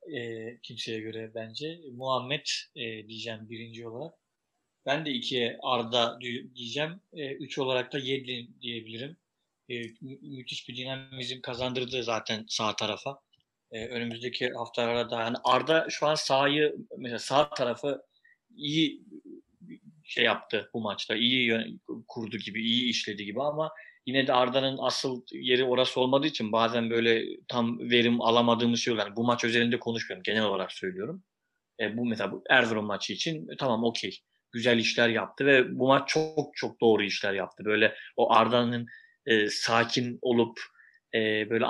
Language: Turkish